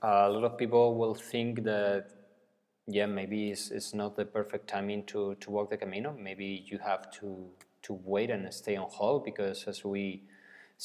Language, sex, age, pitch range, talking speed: English, male, 20-39, 100-115 Hz, 190 wpm